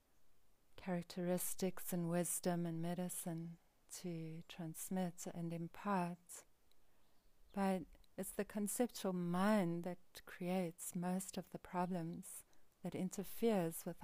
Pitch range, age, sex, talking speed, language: 170-190 Hz, 40-59, female, 100 wpm, English